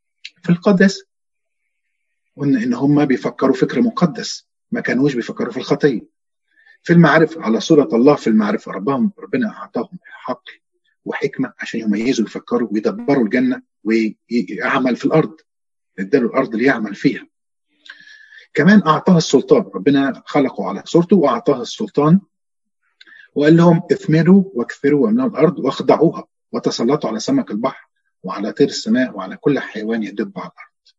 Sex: male